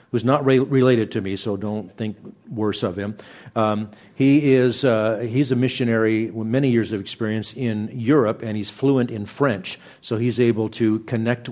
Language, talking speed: English, 190 wpm